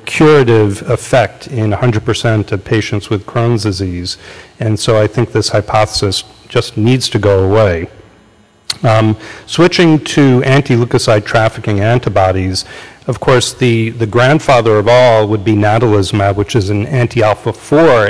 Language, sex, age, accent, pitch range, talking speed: English, male, 40-59, American, 105-120 Hz, 145 wpm